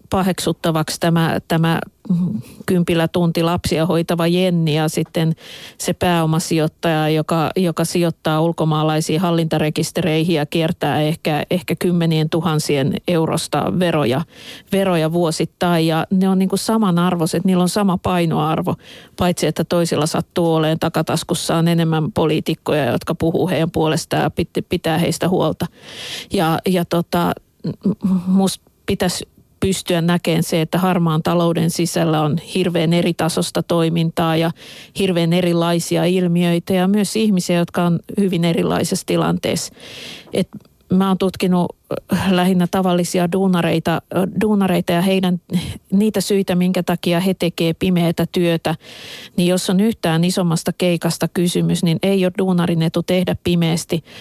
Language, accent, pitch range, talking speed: Finnish, native, 165-185 Hz, 125 wpm